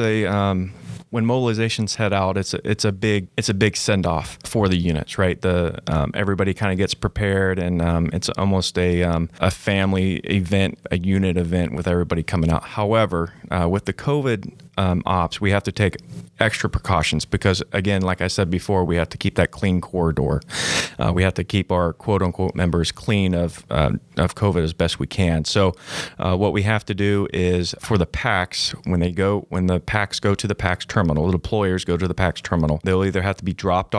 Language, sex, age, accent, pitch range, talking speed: English, male, 30-49, American, 85-100 Hz, 215 wpm